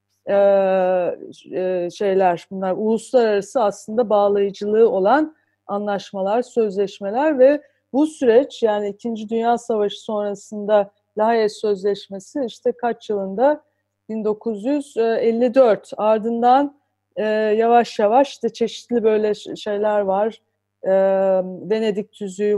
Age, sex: 40-59, female